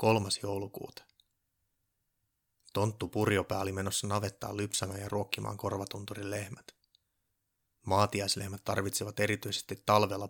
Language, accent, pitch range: Finnish, native, 100-110 Hz